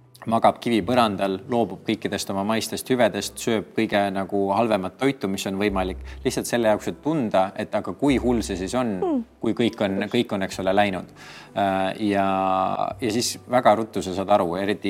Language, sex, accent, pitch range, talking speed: English, male, Finnish, 95-110 Hz, 170 wpm